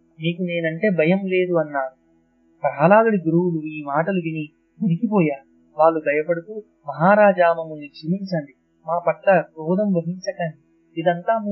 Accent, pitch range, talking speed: native, 150-195 Hz, 105 wpm